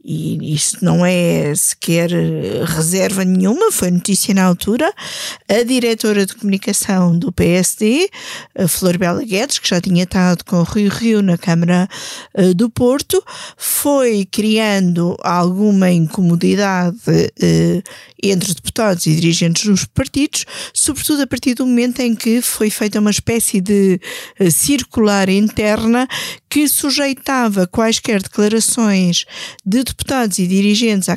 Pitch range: 180-225 Hz